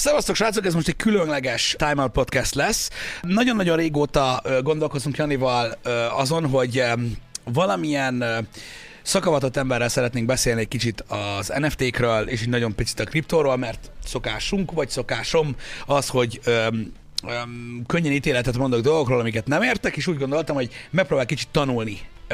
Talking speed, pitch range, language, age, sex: 135 wpm, 125-155 Hz, Hungarian, 30-49, male